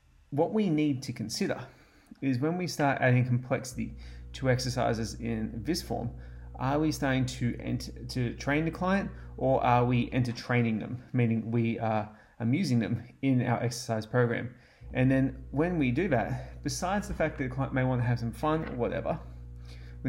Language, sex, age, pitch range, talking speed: English, male, 30-49, 115-130 Hz, 180 wpm